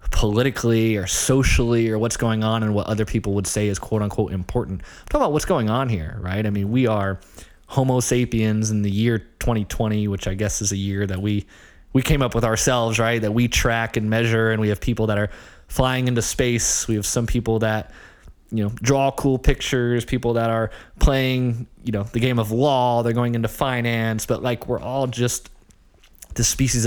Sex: male